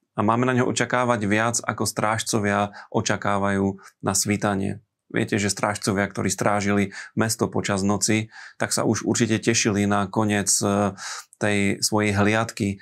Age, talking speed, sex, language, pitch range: 30-49, 135 wpm, male, Slovak, 100-115 Hz